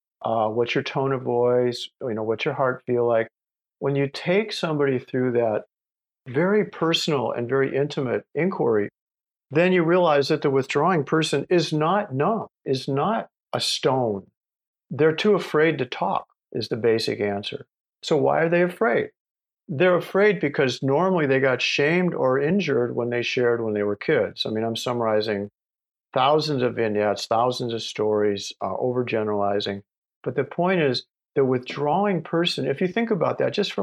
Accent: American